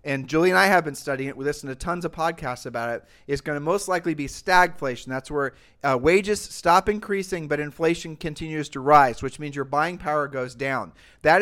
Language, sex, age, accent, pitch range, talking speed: English, male, 40-59, American, 145-180 Hz, 220 wpm